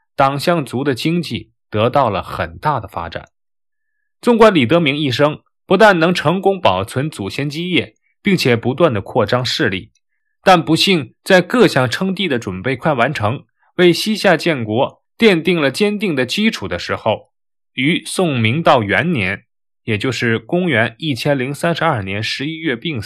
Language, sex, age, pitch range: Chinese, male, 20-39, 115-180 Hz